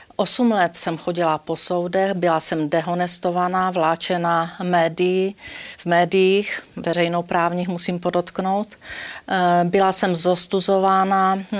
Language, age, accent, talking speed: Czech, 40-59, native, 100 wpm